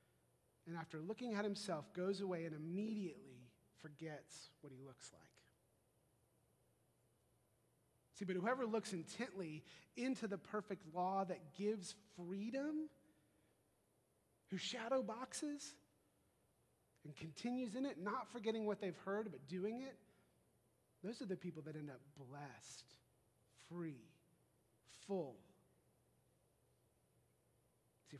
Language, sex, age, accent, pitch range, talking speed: English, male, 30-49, American, 160-200 Hz, 110 wpm